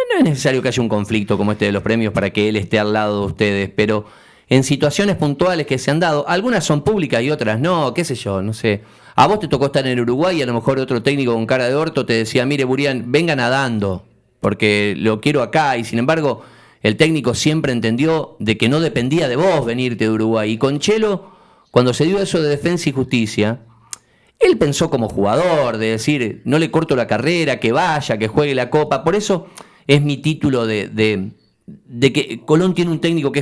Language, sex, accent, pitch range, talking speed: Spanish, male, Argentinian, 115-165 Hz, 225 wpm